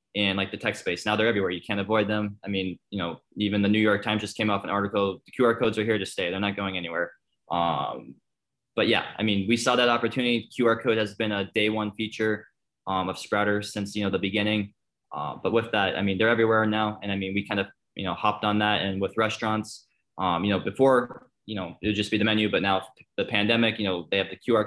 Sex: male